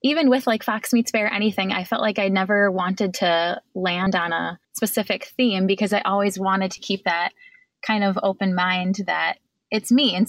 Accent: American